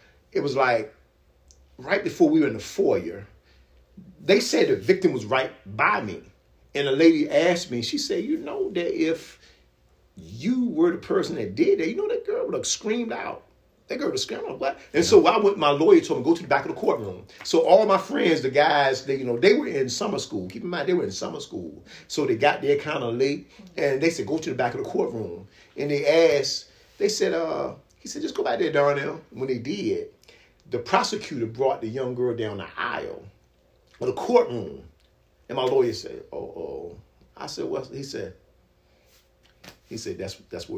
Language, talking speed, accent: English, 215 wpm, American